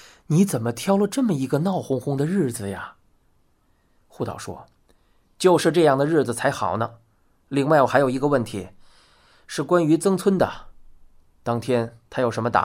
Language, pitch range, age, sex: Chinese, 115-165 Hz, 20-39, male